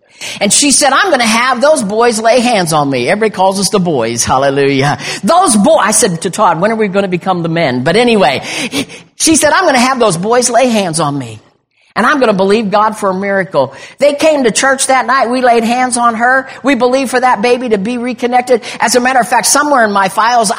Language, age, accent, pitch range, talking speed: English, 50-69, American, 190-255 Hz, 245 wpm